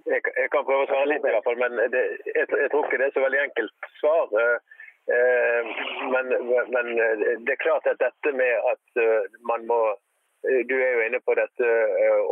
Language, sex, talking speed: English, male, 205 wpm